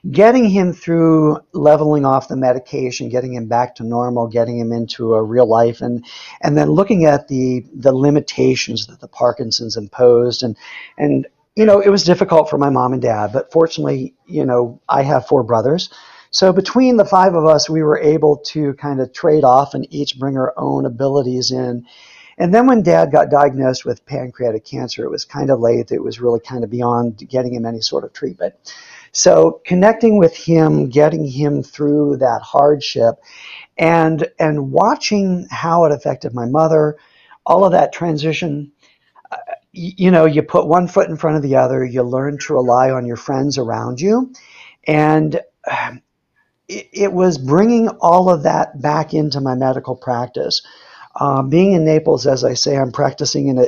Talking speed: 180 wpm